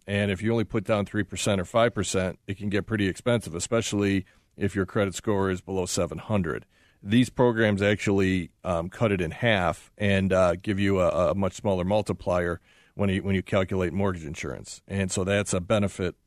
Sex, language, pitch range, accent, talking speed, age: male, English, 95-110 Hz, American, 185 wpm, 40-59